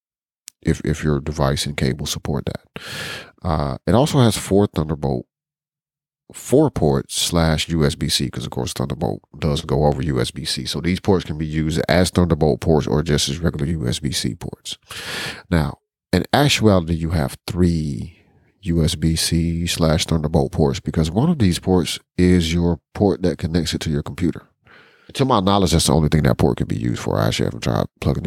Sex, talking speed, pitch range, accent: male, 175 wpm, 75-95 Hz, American